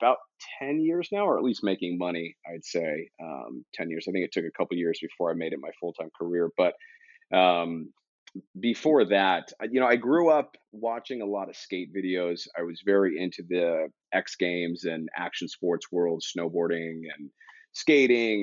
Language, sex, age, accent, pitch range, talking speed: English, male, 30-49, American, 85-110 Hz, 190 wpm